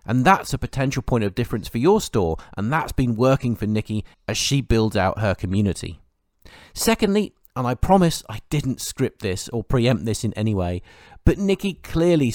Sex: male